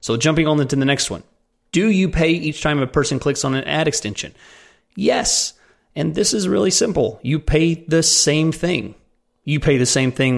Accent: American